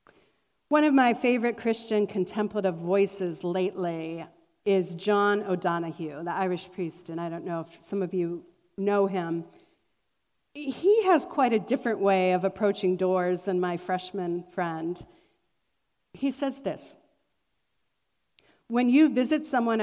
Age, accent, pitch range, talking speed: 40-59, American, 185-235 Hz, 135 wpm